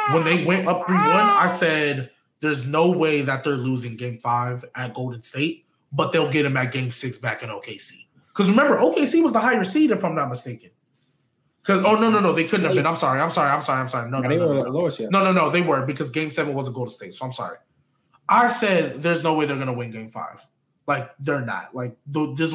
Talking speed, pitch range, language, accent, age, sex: 240 wpm, 135-180 Hz, English, American, 20-39, male